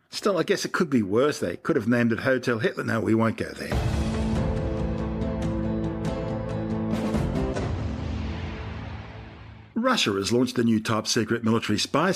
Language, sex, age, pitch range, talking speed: English, male, 50-69, 105-135 Hz, 135 wpm